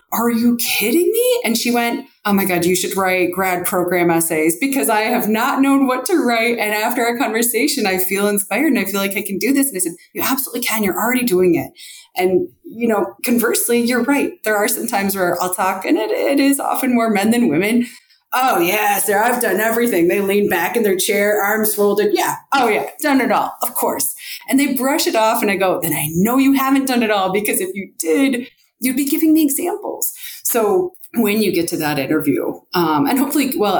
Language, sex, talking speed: English, female, 230 wpm